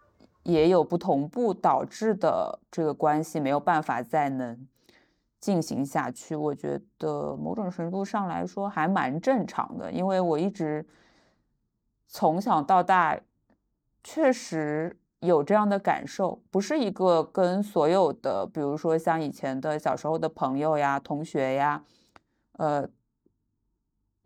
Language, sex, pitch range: Chinese, female, 150-195 Hz